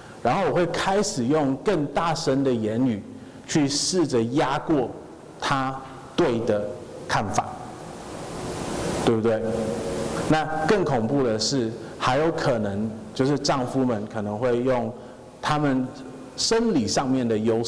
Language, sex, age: Chinese, male, 50-69